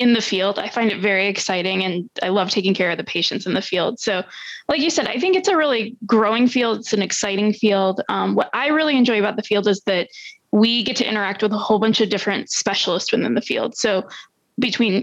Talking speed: 240 wpm